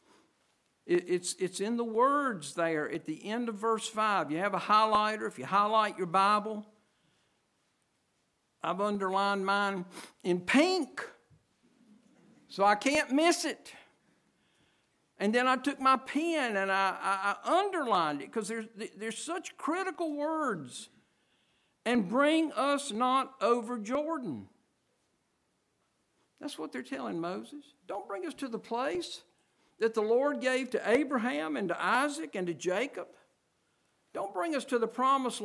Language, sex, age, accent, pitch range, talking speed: English, male, 60-79, American, 210-290 Hz, 140 wpm